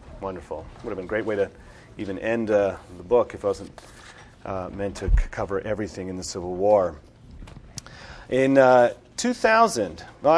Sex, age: male, 40-59